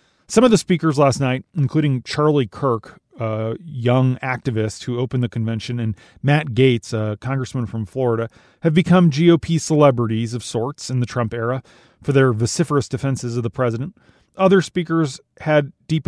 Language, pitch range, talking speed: English, 120-150 Hz, 165 wpm